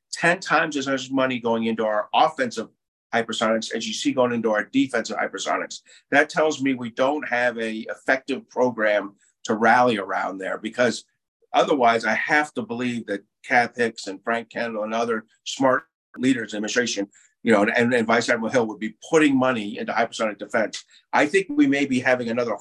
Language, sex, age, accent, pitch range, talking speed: English, male, 50-69, American, 115-150 Hz, 190 wpm